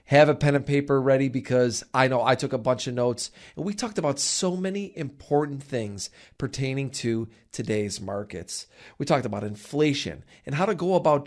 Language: English